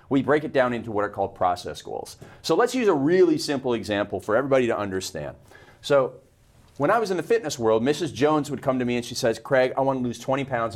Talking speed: 245 wpm